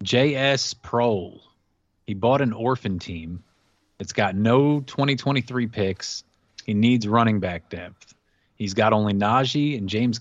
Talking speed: 135 wpm